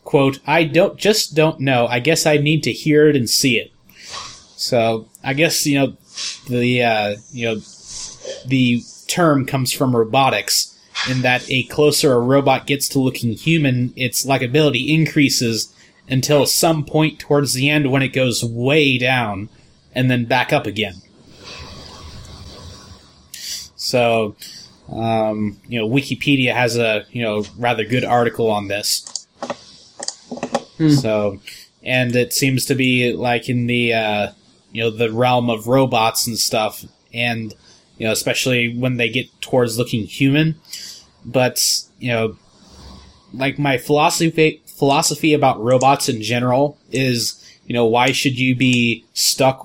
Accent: American